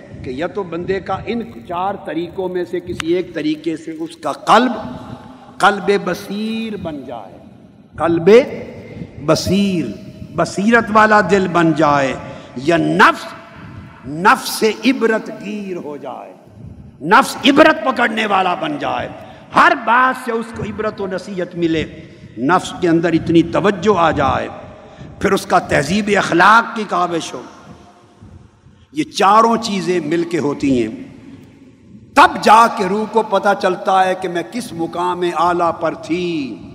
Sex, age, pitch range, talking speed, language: male, 60-79, 165-210 Hz, 145 wpm, Urdu